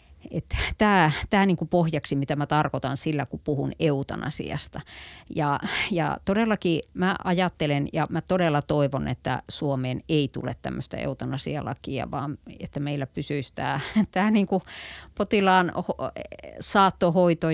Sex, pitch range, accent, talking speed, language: female, 140-180 Hz, native, 120 wpm, Finnish